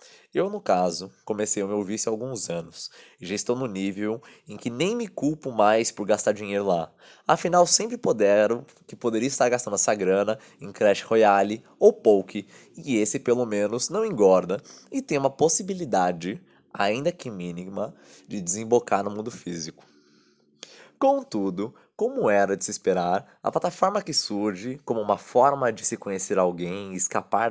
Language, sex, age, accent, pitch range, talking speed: Portuguese, male, 20-39, Brazilian, 95-135 Hz, 165 wpm